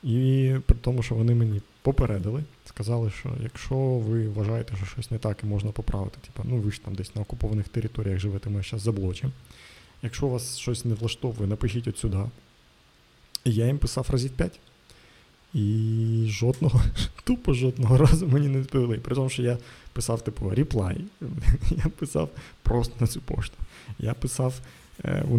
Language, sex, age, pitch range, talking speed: Ukrainian, male, 20-39, 105-130 Hz, 170 wpm